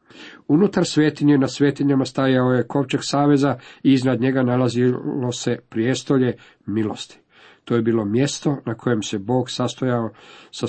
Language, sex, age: Croatian, male, 50-69